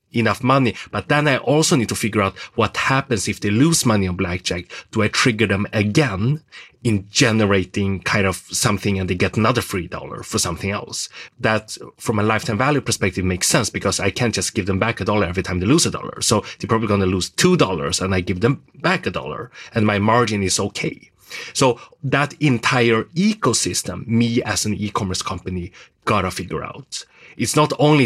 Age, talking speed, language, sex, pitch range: 30-49, 205 wpm, English, male, 100-125 Hz